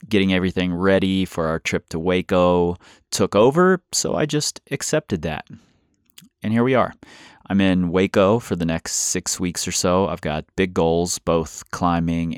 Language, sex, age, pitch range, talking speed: English, male, 30-49, 85-105 Hz, 170 wpm